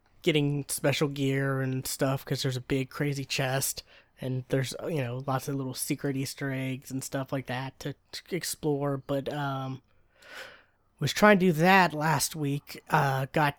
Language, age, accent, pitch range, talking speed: English, 20-39, American, 135-165 Hz, 170 wpm